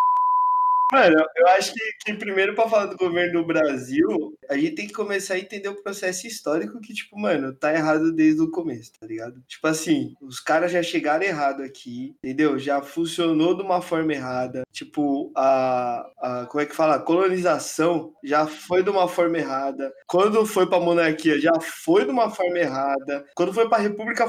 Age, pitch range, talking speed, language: 20-39, 155-235 Hz, 185 wpm, Portuguese